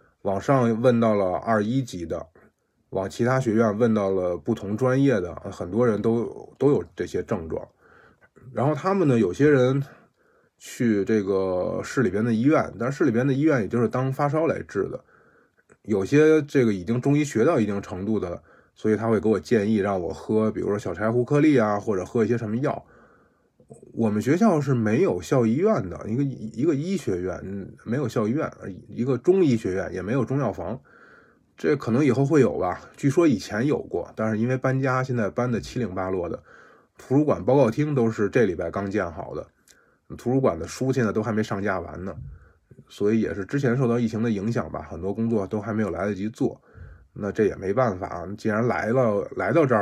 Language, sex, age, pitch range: Chinese, male, 20-39, 100-130 Hz